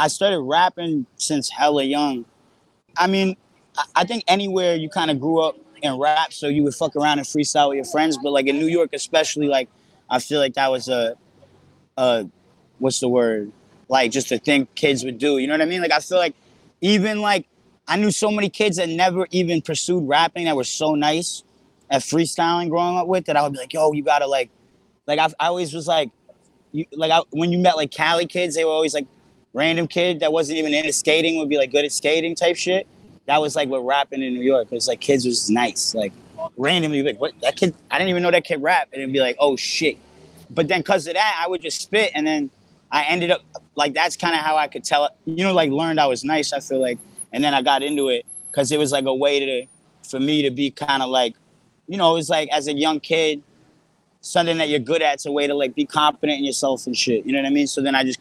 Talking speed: 250 wpm